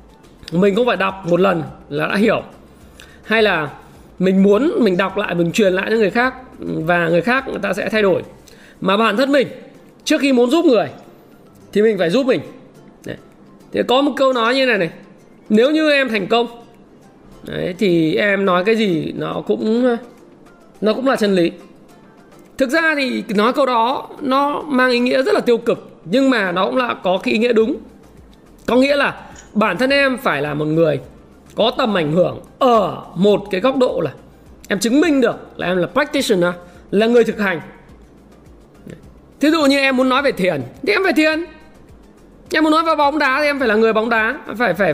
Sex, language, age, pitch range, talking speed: male, Vietnamese, 20-39, 195-270 Hz, 205 wpm